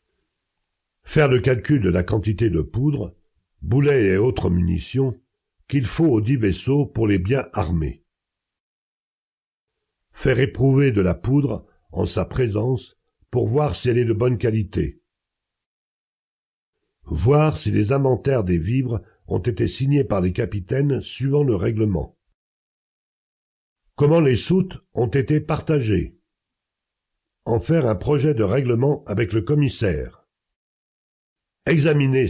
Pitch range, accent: 100-140 Hz, French